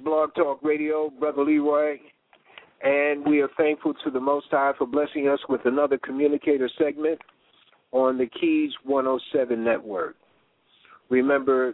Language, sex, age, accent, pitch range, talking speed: English, male, 50-69, American, 120-140 Hz, 135 wpm